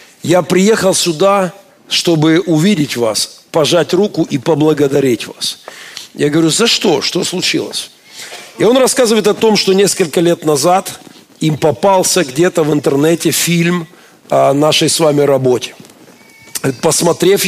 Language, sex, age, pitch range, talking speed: Russian, male, 50-69, 145-180 Hz, 130 wpm